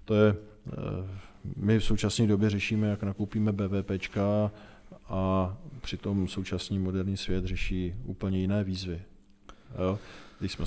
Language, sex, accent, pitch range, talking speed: Czech, male, native, 90-105 Hz, 120 wpm